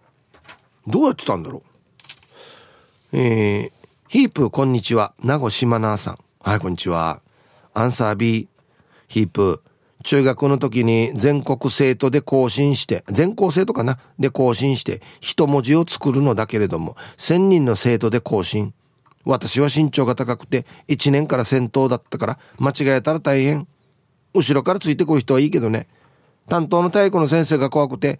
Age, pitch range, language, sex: 40-59, 125-155 Hz, Japanese, male